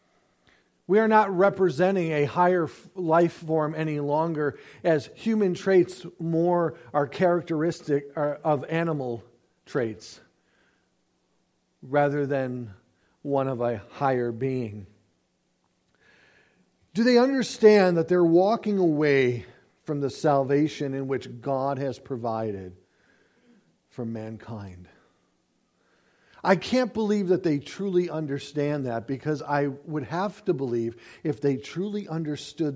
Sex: male